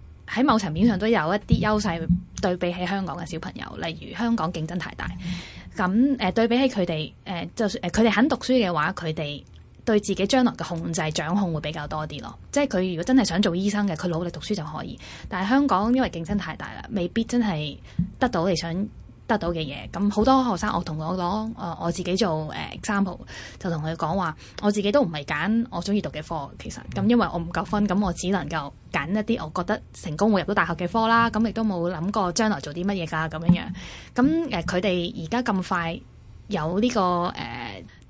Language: Chinese